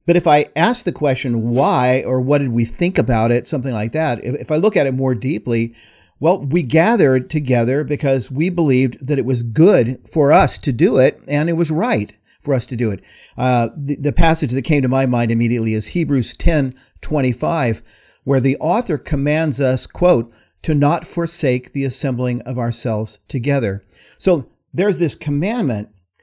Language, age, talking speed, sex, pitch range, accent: English, 50-69, 190 wpm, male, 120-160 Hz, American